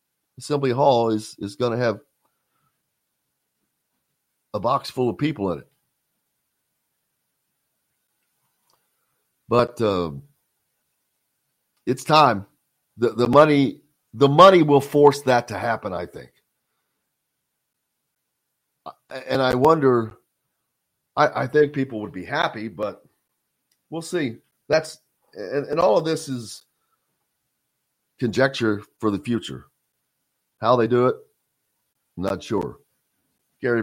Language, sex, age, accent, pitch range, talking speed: English, male, 50-69, American, 105-140 Hz, 110 wpm